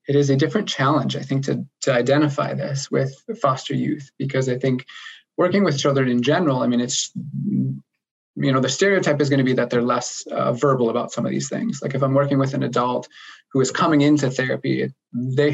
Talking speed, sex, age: 215 wpm, male, 20-39